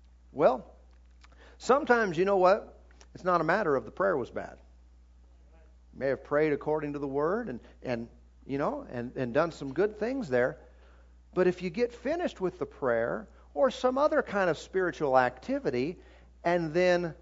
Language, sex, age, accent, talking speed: English, male, 40-59, American, 175 wpm